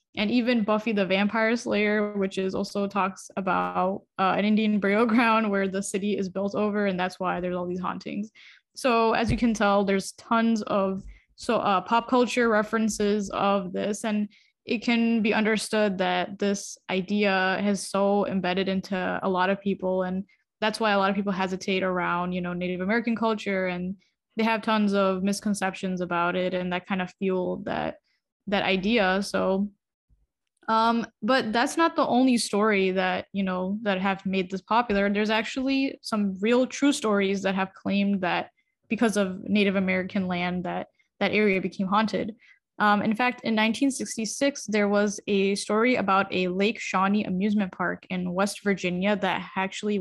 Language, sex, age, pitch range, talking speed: English, female, 10-29, 190-225 Hz, 175 wpm